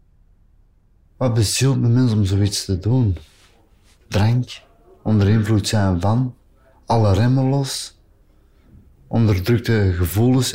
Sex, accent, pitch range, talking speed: male, Dutch, 90-115 Hz, 100 wpm